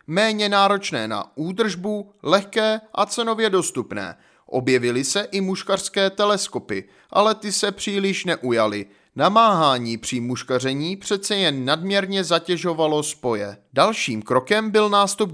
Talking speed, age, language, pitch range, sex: 115 wpm, 30-49, Czech, 135-200 Hz, male